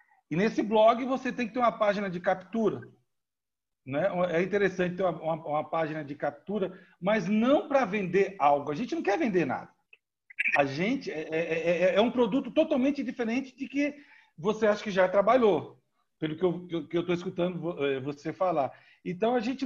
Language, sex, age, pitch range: Portuguese, male, 60-79, 170-245 Hz